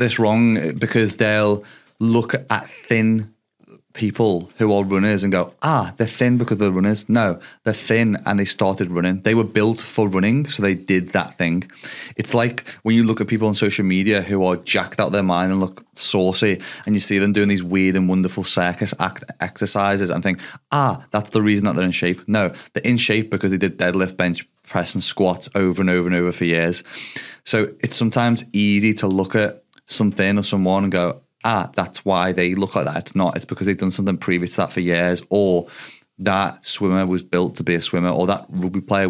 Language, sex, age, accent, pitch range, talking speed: English, male, 20-39, British, 90-110 Hz, 215 wpm